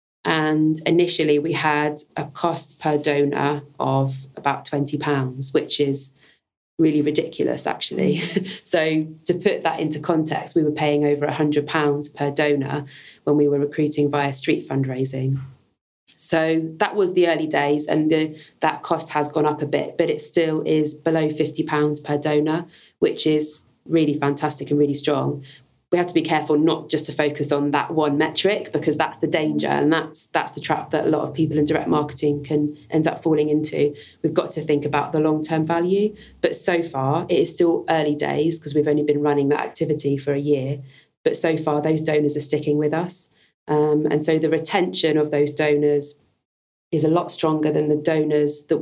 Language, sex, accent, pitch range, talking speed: English, female, British, 145-160 Hz, 185 wpm